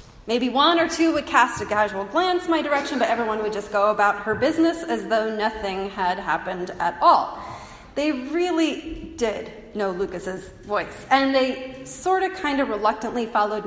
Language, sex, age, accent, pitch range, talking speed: English, female, 30-49, American, 215-295 Hz, 175 wpm